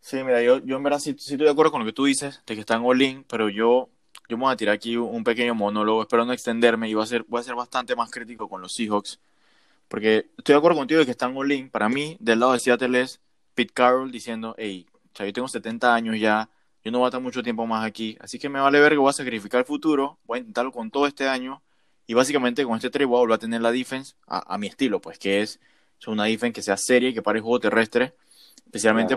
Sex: male